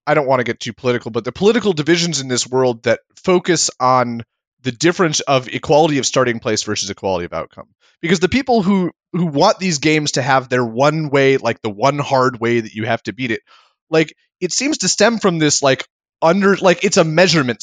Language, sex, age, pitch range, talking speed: English, male, 30-49, 120-175 Hz, 220 wpm